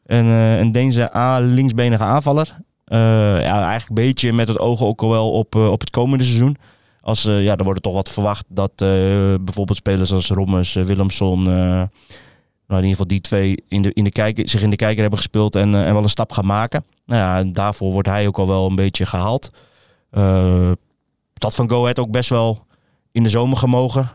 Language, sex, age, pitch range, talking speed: Dutch, male, 20-39, 100-115 Hz, 215 wpm